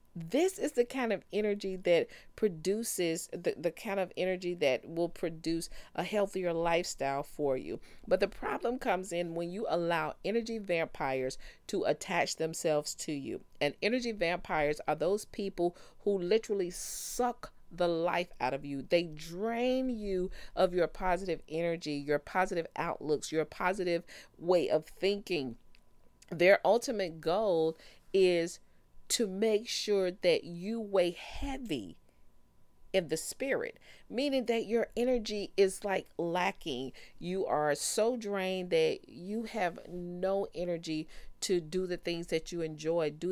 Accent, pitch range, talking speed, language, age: American, 160-205 Hz, 145 wpm, English, 40-59